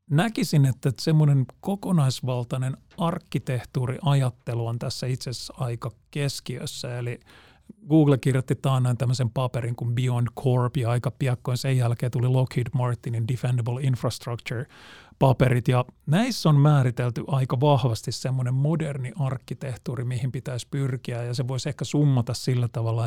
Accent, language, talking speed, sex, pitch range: native, Finnish, 125 wpm, male, 115-135 Hz